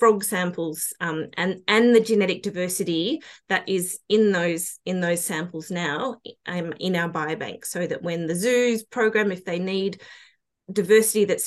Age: 20-39